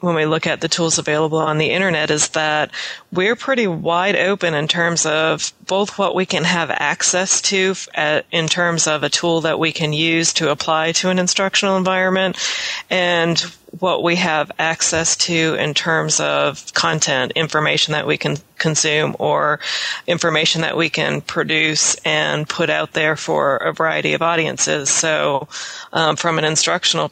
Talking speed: 170 wpm